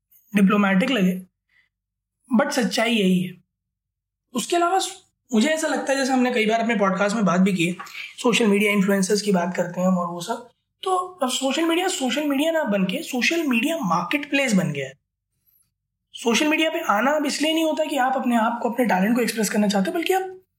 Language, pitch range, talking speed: Hindi, 190-270 Hz, 200 wpm